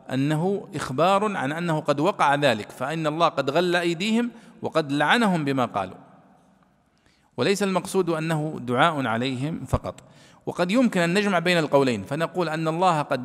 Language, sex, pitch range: Arabic, male, 140-185 Hz